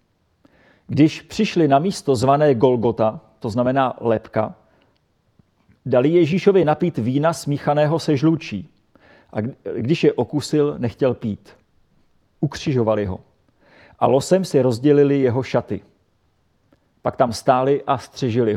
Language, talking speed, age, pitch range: Czech, 115 wpm, 40-59, 120-155 Hz